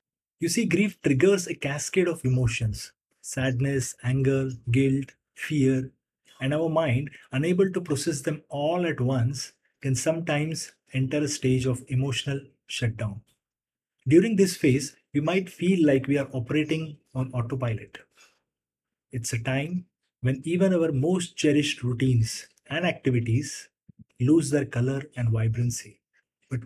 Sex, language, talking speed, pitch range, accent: male, English, 135 wpm, 125-155 Hz, Indian